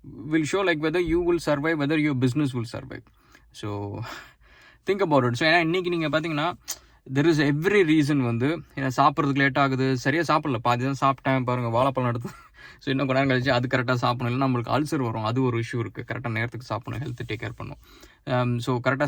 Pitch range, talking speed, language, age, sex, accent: 115-140 Hz, 145 wpm, English, 20-39, male, Indian